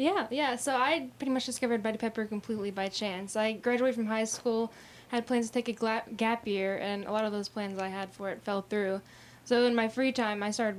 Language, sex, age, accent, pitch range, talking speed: English, female, 10-29, American, 200-230 Hz, 245 wpm